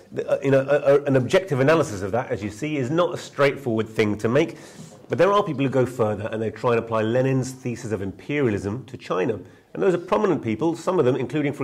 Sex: male